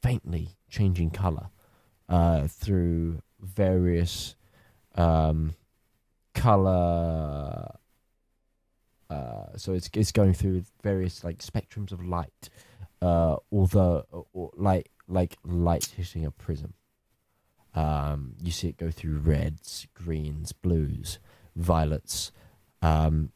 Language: English